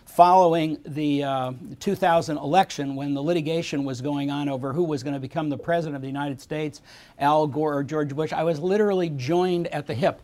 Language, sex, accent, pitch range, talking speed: English, male, American, 140-160 Hz, 205 wpm